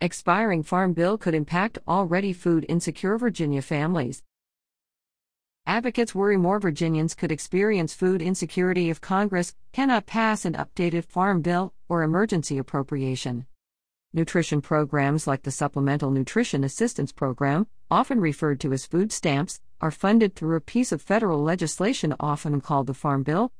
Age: 50-69